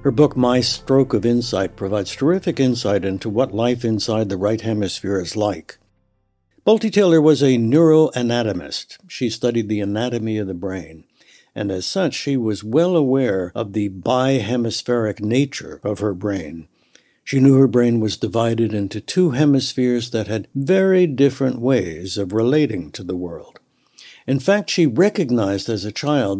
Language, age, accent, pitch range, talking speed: English, 60-79, American, 105-135 Hz, 160 wpm